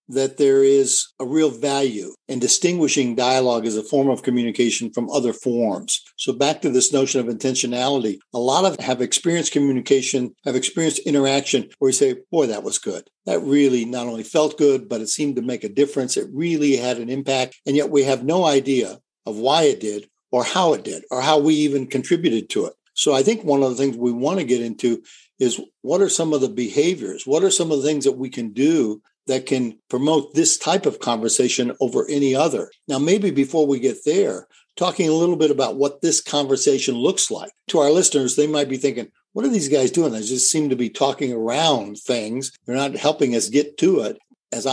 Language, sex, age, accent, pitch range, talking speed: English, male, 60-79, American, 125-150 Hz, 215 wpm